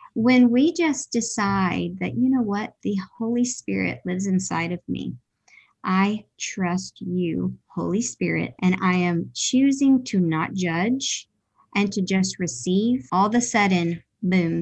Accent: American